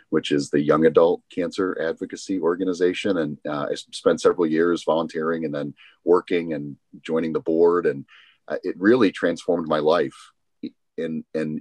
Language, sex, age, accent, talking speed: English, male, 40-59, American, 160 wpm